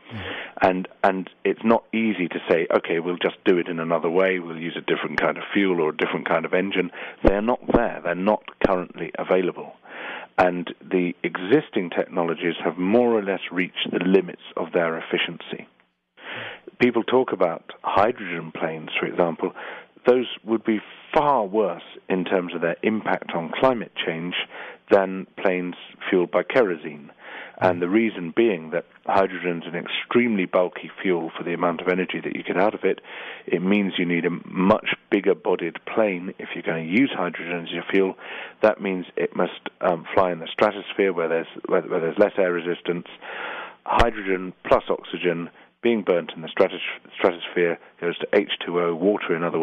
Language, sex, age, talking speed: English, male, 40-59, 175 wpm